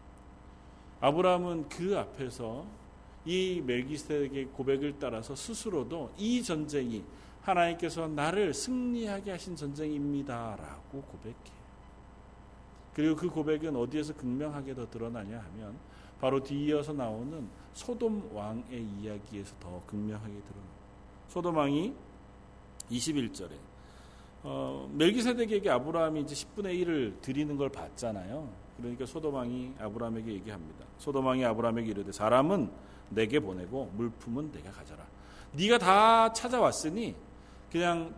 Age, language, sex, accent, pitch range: 40-59, Korean, male, native, 100-155 Hz